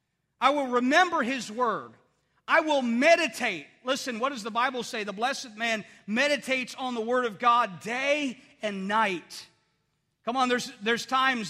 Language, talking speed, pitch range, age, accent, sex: English, 160 wpm, 220-275 Hz, 40-59, American, male